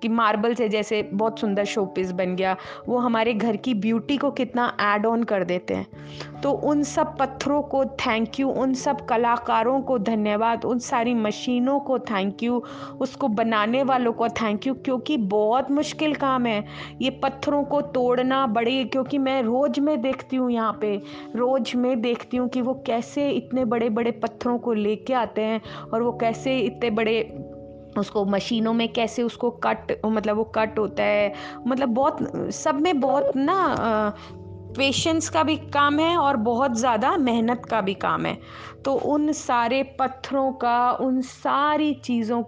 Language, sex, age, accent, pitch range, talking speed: Hindi, female, 20-39, native, 210-260 Hz, 170 wpm